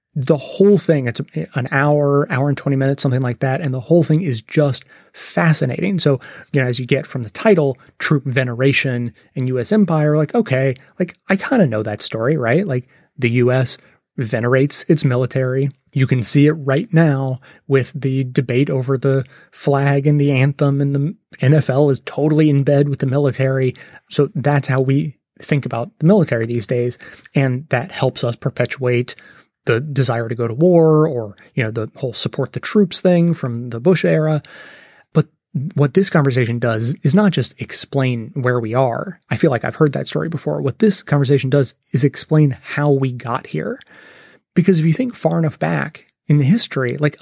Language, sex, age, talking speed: English, male, 30-49, 190 wpm